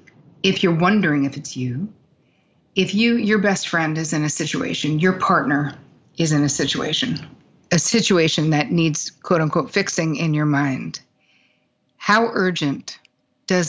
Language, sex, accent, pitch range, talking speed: English, female, American, 150-180 Hz, 150 wpm